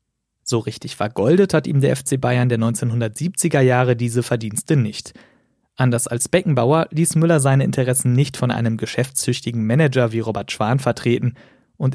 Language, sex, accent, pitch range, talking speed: German, male, German, 120-145 Hz, 155 wpm